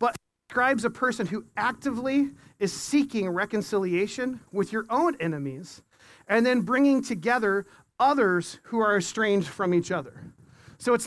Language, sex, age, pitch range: English, male, 40-59, 195-255 Hz